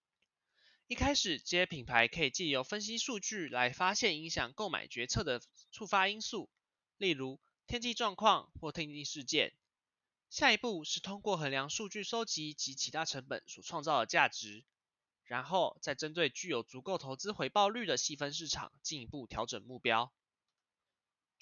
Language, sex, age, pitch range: Chinese, male, 20-39, 135-205 Hz